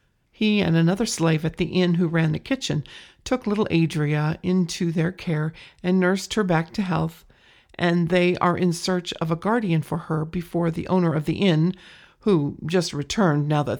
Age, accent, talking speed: 50-69, American, 190 wpm